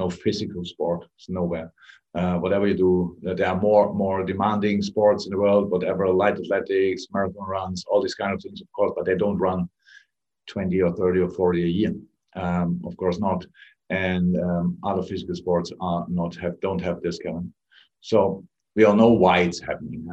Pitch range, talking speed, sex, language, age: 90-110 Hz, 195 wpm, male, English, 50-69